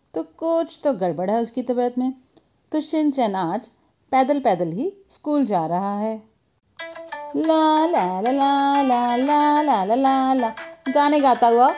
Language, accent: Hindi, native